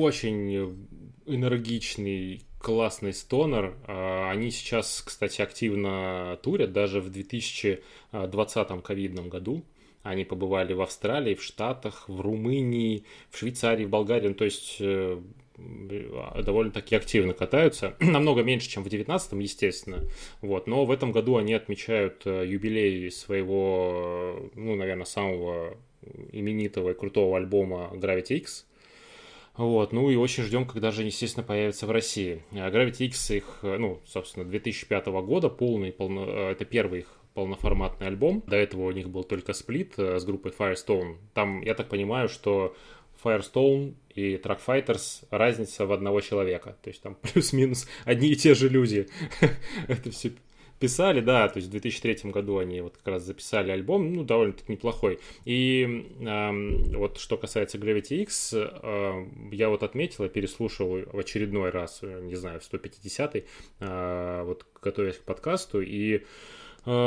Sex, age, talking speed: male, 20-39, 140 wpm